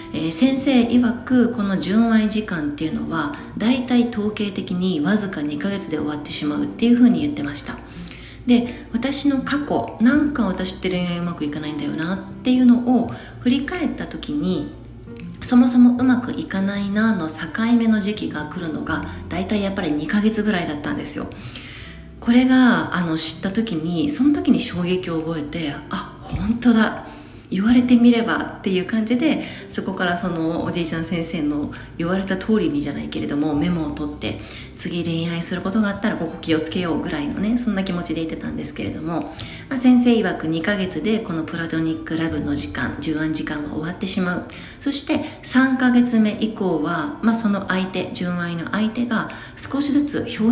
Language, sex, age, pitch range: Japanese, female, 40-59, 160-240 Hz